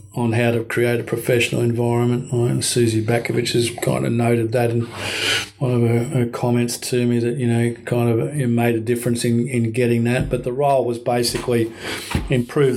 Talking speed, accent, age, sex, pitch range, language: 195 wpm, Australian, 40-59, male, 120-125 Hz, English